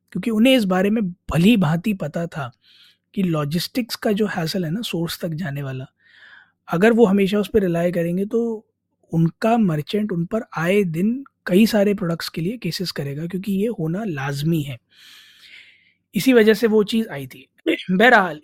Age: 20-39